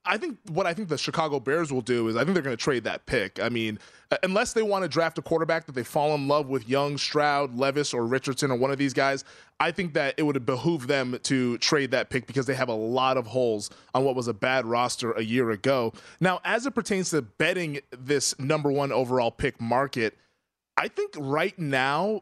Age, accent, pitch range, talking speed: 20-39, American, 130-160 Hz, 235 wpm